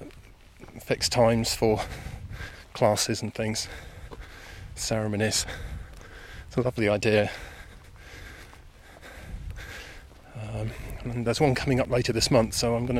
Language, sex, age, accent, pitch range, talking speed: English, male, 30-49, British, 85-115 Hz, 100 wpm